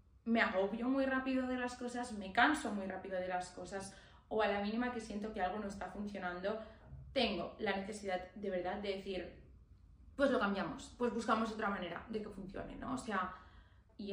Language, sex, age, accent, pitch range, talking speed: Spanish, female, 20-39, Spanish, 190-230 Hz, 195 wpm